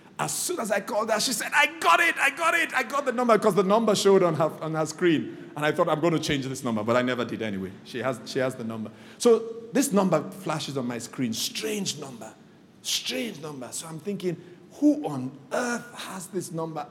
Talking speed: 240 wpm